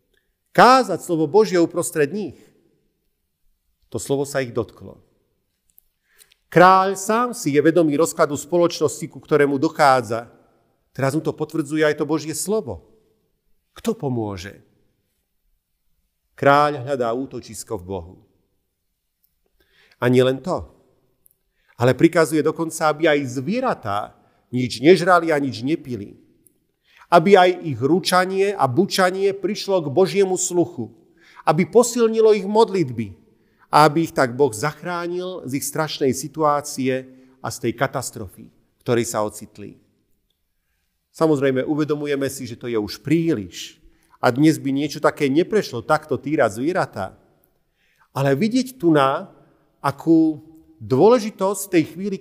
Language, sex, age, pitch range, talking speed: Slovak, male, 40-59, 125-170 Hz, 120 wpm